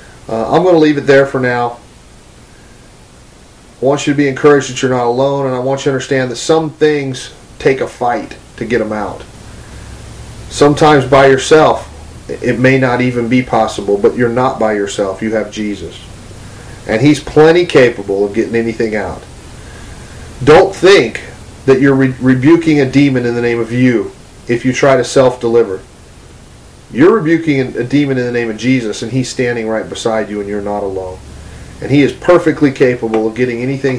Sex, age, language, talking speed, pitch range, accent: male, 40-59, English, 185 wpm, 110-140 Hz, American